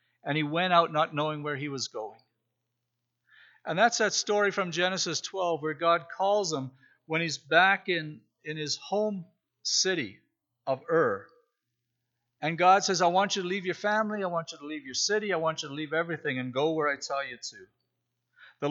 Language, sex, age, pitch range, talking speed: English, male, 50-69, 130-185 Hz, 200 wpm